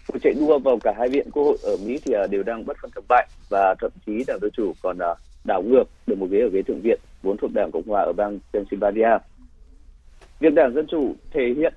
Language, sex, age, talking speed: Vietnamese, male, 30-49, 240 wpm